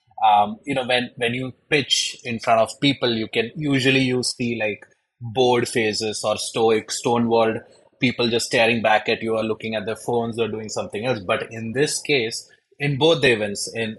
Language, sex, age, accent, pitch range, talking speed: English, male, 20-39, Indian, 110-125 Hz, 195 wpm